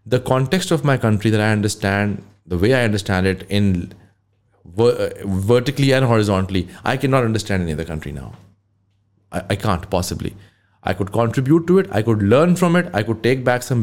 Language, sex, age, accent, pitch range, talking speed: English, male, 30-49, Indian, 100-120 Hz, 190 wpm